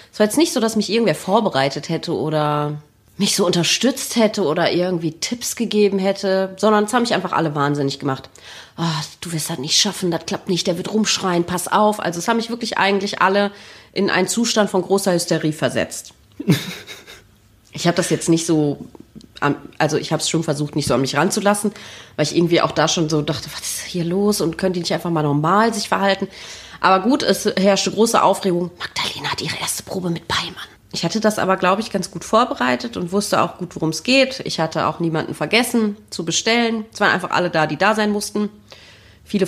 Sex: female